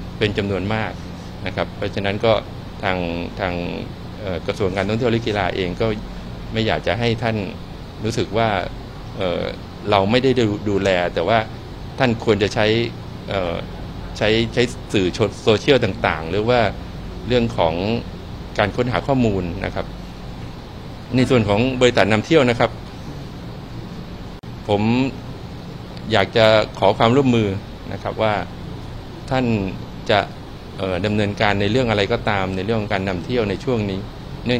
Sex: male